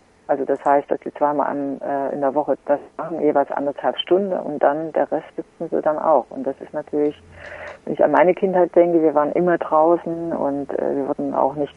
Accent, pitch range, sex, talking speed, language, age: German, 140-165 Hz, female, 225 wpm, German, 50-69